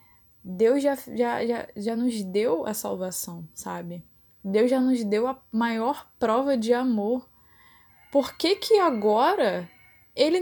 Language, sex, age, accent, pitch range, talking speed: Portuguese, female, 10-29, Brazilian, 200-275 Hz, 125 wpm